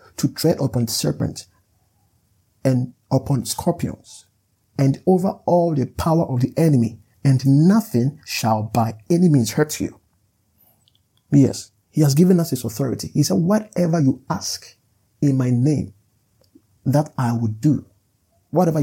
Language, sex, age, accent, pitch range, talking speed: English, male, 50-69, Nigerian, 110-155 Hz, 140 wpm